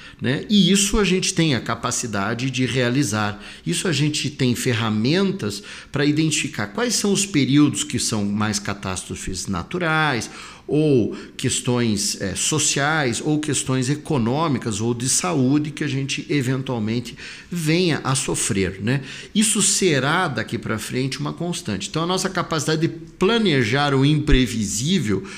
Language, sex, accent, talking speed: Portuguese, male, Brazilian, 135 wpm